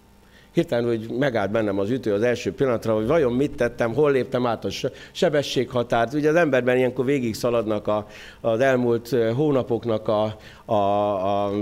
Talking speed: 155 wpm